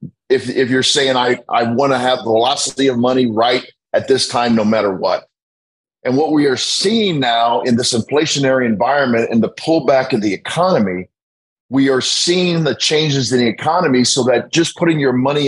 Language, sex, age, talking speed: English, male, 50-69, 190 wpm